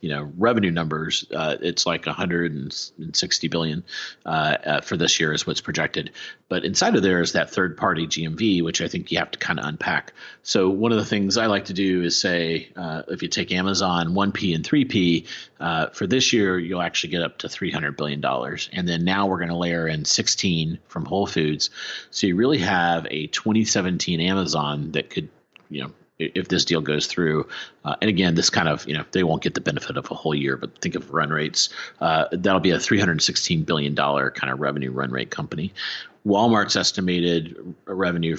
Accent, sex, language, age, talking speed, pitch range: American, male, English, 40-59, 205 wpm, 75-95 Hz